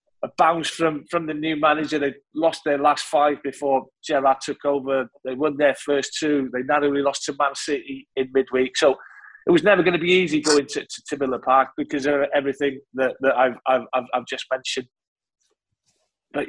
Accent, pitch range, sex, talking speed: British, 140-180 Hz, male, 195 wpm